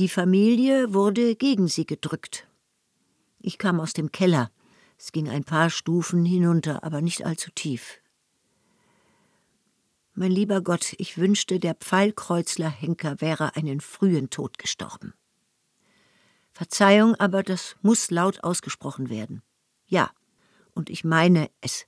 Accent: German